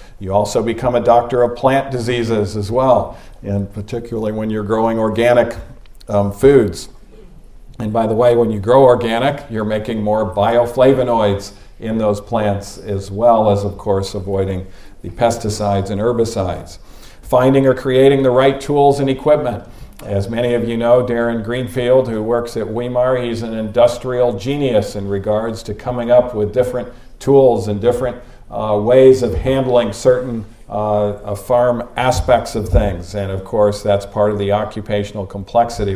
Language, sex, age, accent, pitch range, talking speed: English, male, 50-69, American, 100-120 Hz, 160 wpm